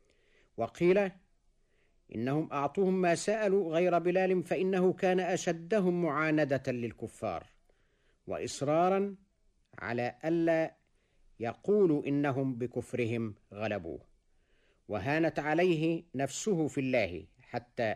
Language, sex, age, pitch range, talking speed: Arabic, male, 50-69, 120-185 Hz, 85 wpm